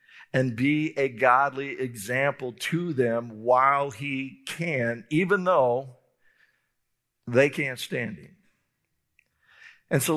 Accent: American